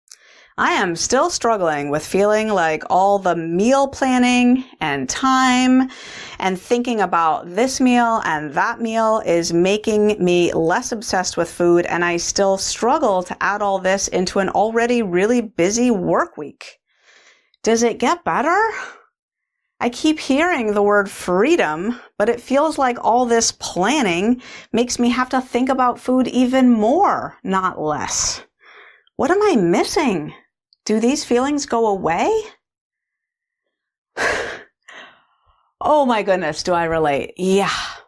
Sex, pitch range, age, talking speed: female, 185-255 Hz, 30-49, 135 wpm